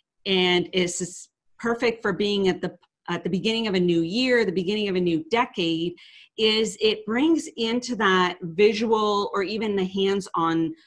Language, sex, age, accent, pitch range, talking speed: English, female, 40-59, American, 175-220 Hz, 165 wpm